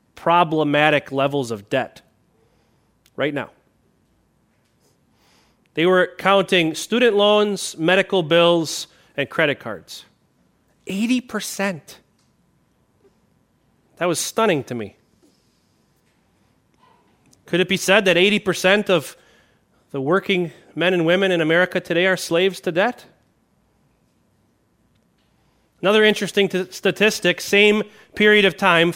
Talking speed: 100 wpm